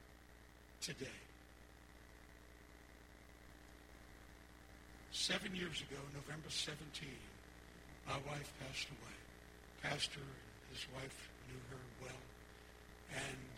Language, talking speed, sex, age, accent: English, 80 wpm, male, 60-79, American